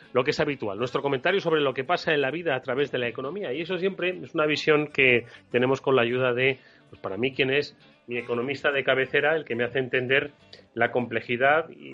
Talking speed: 235 wpm